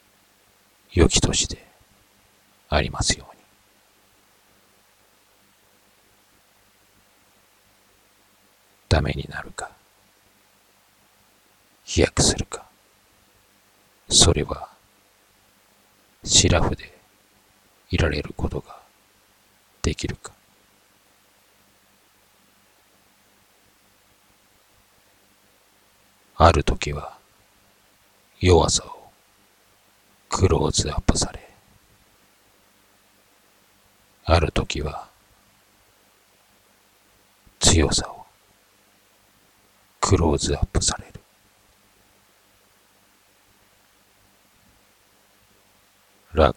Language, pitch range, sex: Japanese, 95-105 Hz, male